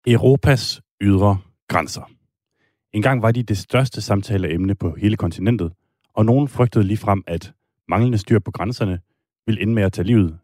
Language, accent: Danish, native